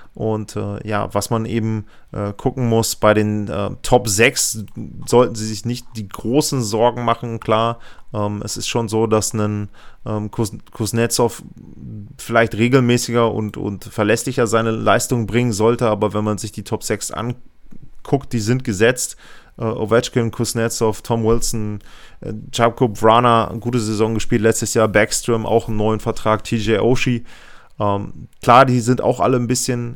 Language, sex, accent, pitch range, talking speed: German, male, German, 105-120 Hz, 155 wpm